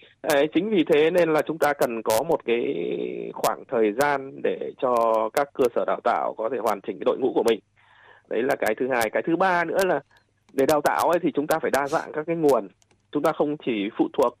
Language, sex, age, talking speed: Vietnamese, male, 20-39, 245 wpm